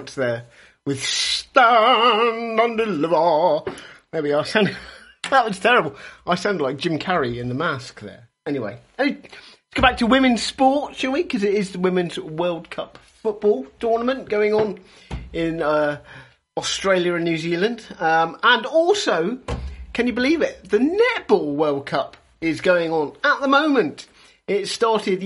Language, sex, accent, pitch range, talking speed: English, male, British, 150-225 Hz, 155 wpm